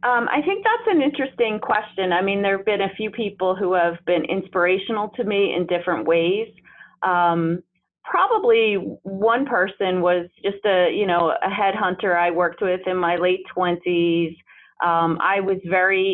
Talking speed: 170 wpm